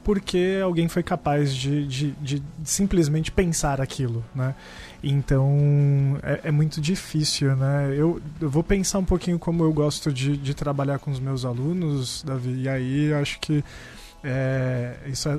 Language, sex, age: Portuguese, male, 20-39